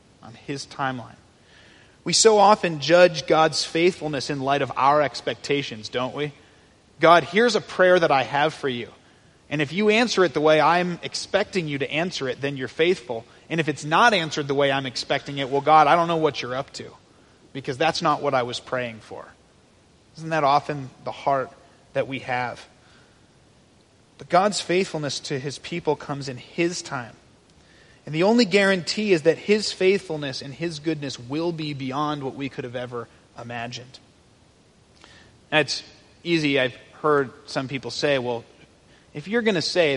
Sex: male